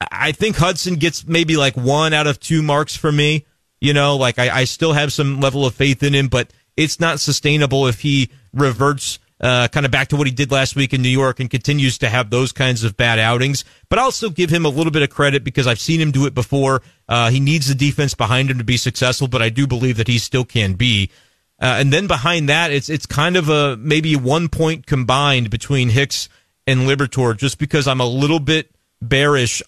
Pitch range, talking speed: 115-145 Hz, 235 wpm